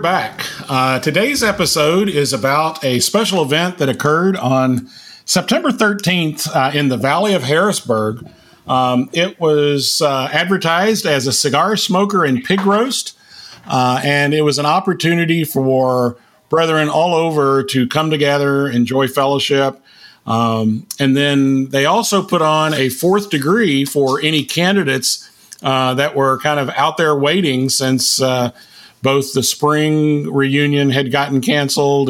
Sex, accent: male, American